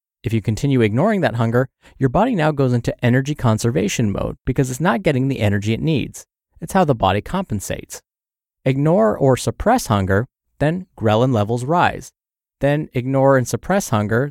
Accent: American